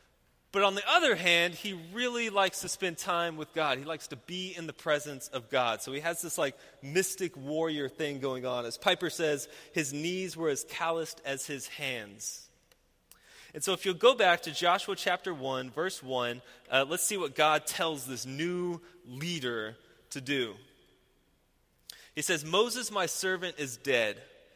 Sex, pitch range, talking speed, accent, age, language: male, 130-175 Hz, 180 wpm, American, 20-39, English